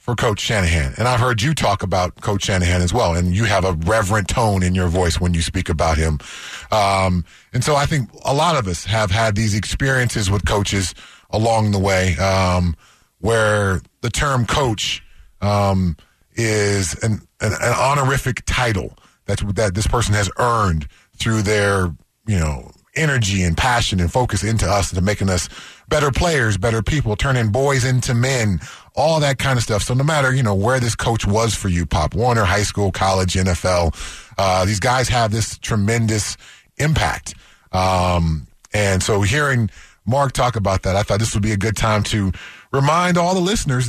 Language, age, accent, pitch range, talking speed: English, 30-49, American, 95-120 Hz, 185 wpm